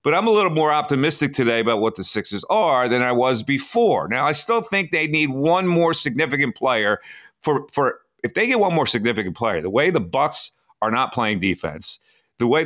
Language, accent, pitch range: English, American, 125-190 Hz